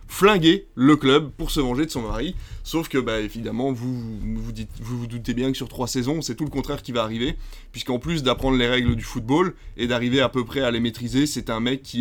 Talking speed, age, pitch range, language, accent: 255 wpm, 20-39, 120-145 Hz, French, French